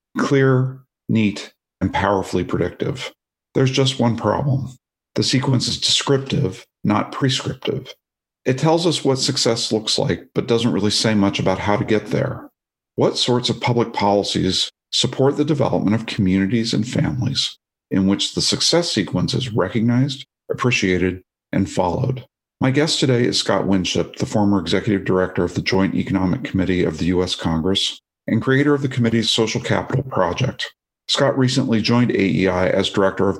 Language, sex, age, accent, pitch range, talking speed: English, male, 50-69, American, 95-130 Hz, 160 wpm